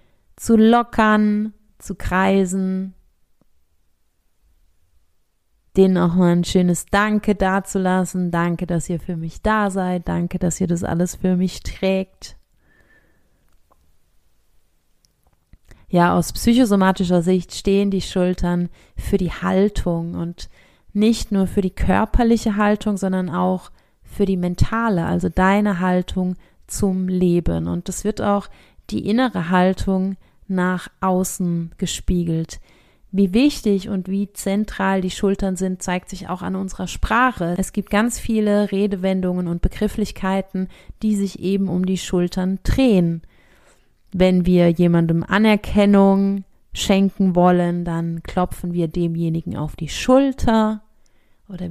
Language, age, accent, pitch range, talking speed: German, 30-49, German, 175-200 Hz, 120 wpm